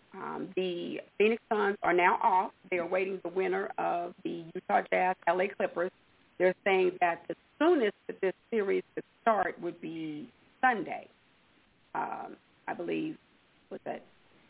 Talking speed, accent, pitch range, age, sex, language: 150 wpm, American, 175-225 Hz, 40-59, female, English